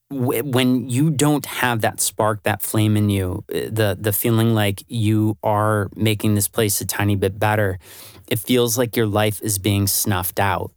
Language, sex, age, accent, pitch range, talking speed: English, male, 30-49, American, 100-115 Hz, 180 wpm